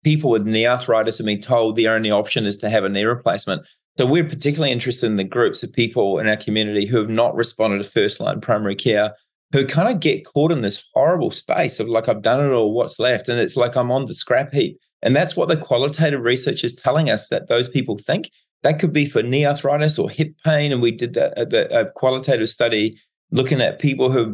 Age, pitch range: 30-49, 115-155 Hz